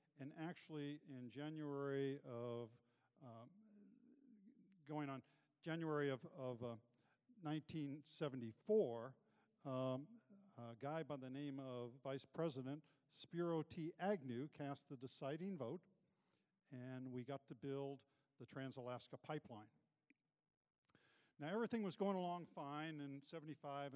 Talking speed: 115 wpm